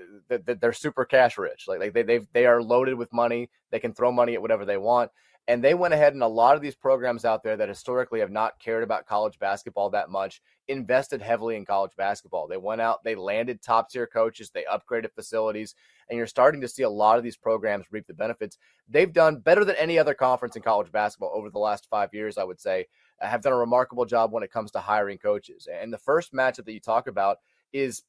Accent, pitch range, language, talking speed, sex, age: American, 110-135 Hz, English, 235 wpm, male, 30-49